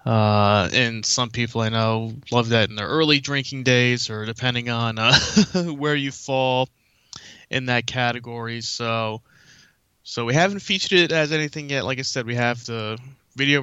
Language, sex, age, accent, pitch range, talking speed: English, male, 20-39, American, 115-130 Hz, 170 wpm